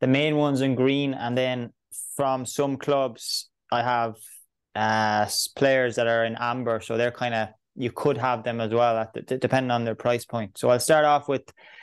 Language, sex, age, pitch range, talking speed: English, male, 20-39, 115-135 Hz, 205 wpm